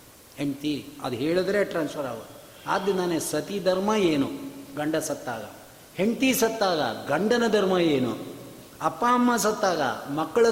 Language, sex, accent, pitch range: Kannada, male, native, 145-210 Hz